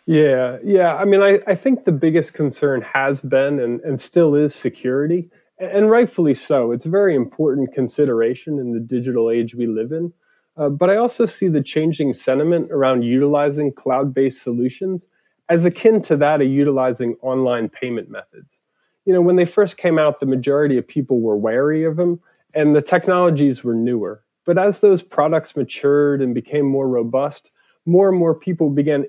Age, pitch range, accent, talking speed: 30-49, 125-170 Hz, American, 180 wpm